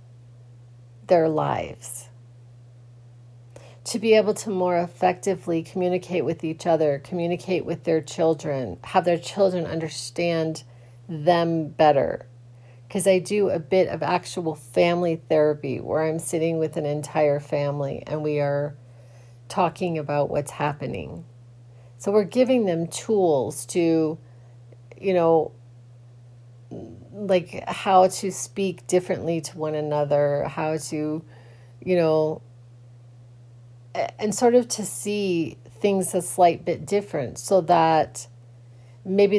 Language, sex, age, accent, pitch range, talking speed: English, female, 40-59, American, 120-175 Hz, 120 wpm